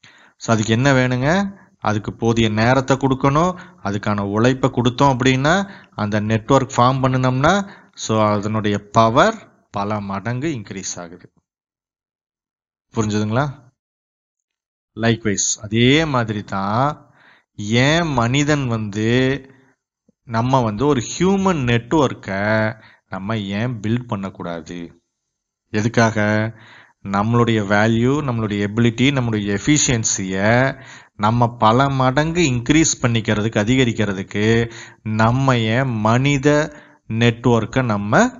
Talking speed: 65 wpm